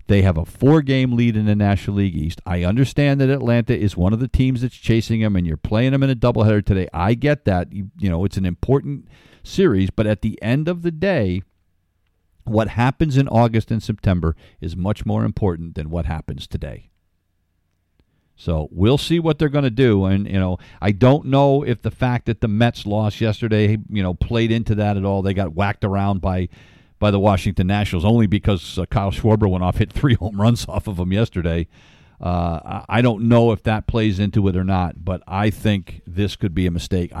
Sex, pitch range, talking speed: male, 90-115 Hz, 215 wpm